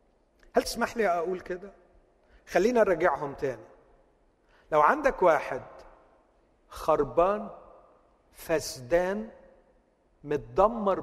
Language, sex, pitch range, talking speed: Arabic, male, 145-180 Hz, 75 wpm